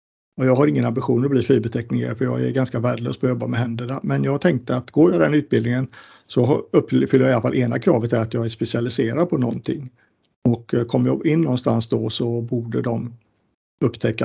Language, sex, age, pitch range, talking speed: Swedish, male, 50-69, 115-130 Hz, 210 wpm